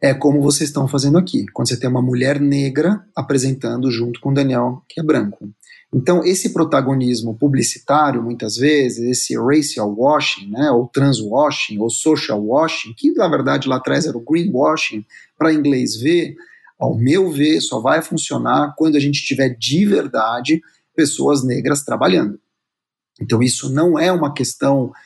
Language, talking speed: Portuguese, 165 wpm